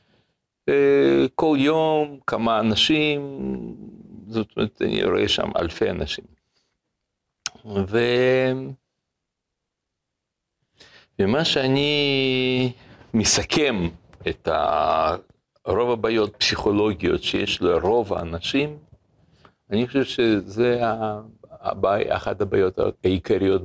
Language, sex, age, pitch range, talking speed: Hebrew, male, 60-79, 95-135 Hz, 70 wpm